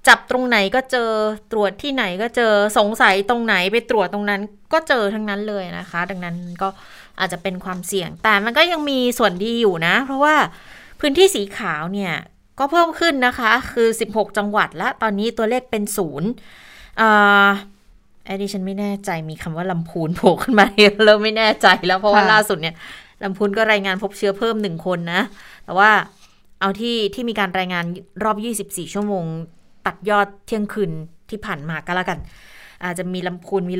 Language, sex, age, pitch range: Thai, female, 20-39, 185-215 Hz